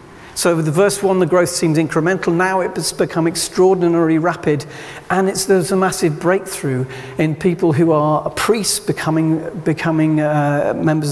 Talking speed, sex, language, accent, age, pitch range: 150 wpm, male, English, British, 50-69, 155-195 Hz